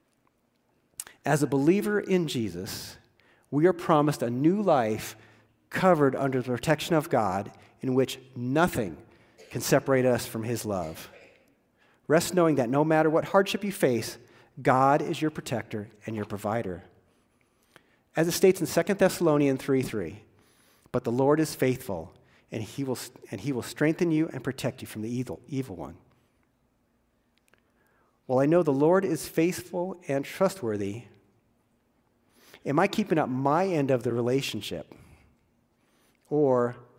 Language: English